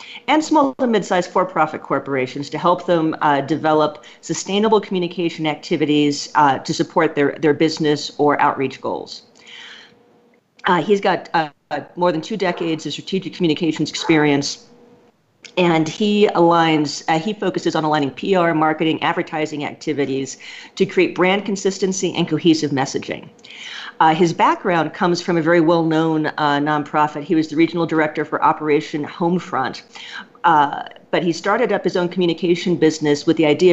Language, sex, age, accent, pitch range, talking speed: English, female, 50-69, American, 150-180 Hz, 150 wpm